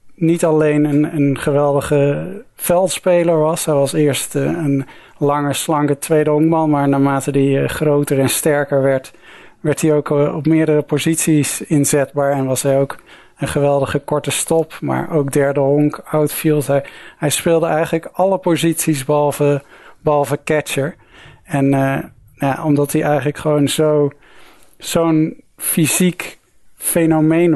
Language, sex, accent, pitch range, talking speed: Dutch, male, Dutch, 140-160 Hz, 135 wpm